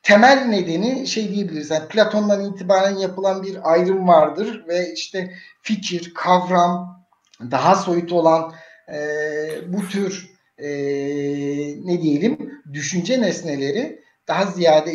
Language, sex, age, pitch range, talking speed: Turkish, male, 60-79, 165-220 Hz, 110 wpm